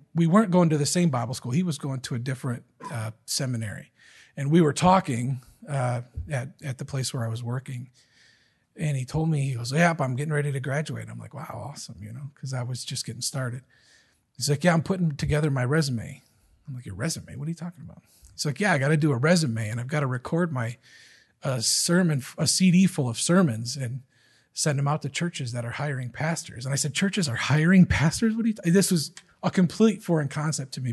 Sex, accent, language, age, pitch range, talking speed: male, American, English, 40-59, 130-175 Hz, 235 wpm